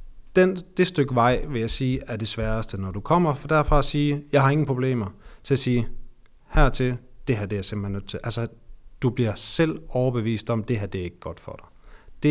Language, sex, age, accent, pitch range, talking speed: Danish, male, 40-59, native, 100-125 Hz, 230 wpm